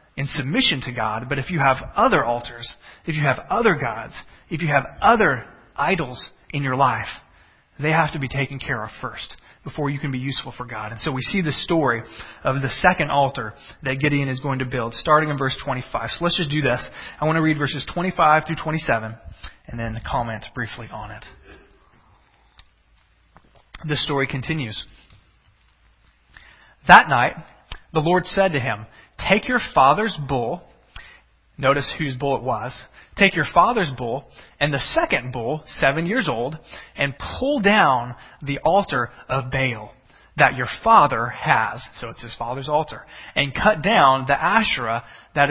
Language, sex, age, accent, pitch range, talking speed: English, male, 30-49, American, 120-155 Hz, 170 wpm